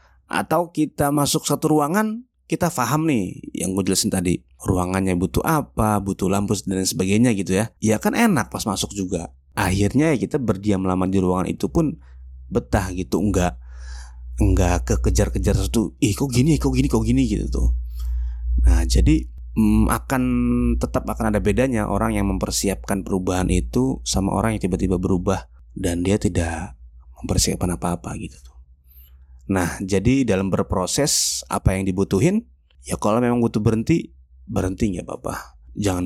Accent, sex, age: native, male, 30-49